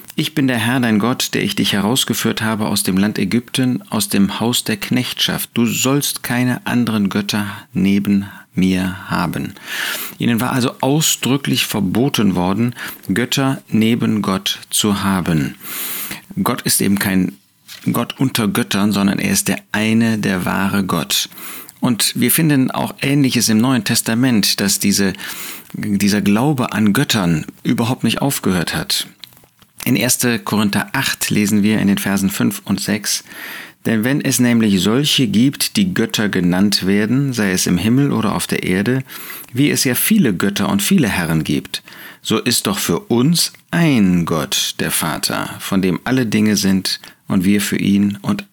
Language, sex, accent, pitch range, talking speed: German, male, German, 100-125 Hz, 160 wpm